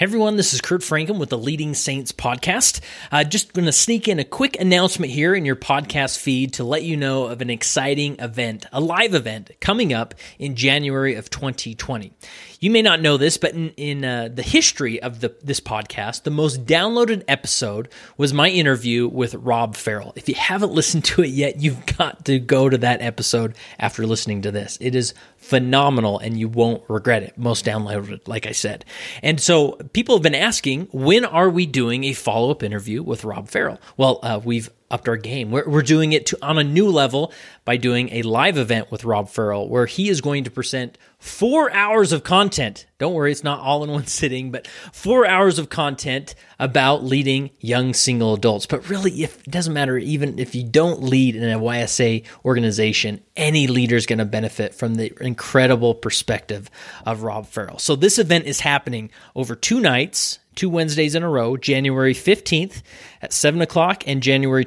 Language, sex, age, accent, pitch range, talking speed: English, male, 30-49, American, 120-155 Hz, 195 wpm